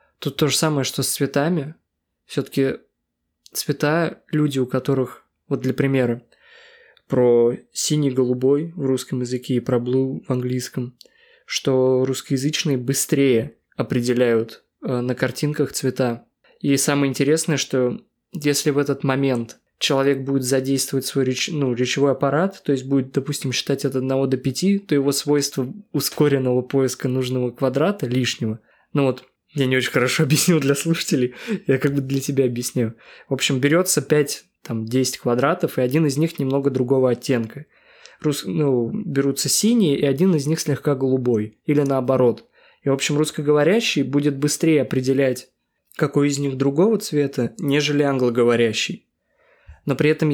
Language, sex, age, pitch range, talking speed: Russian, male, 20-39, 130-150 Hz, 150 wpm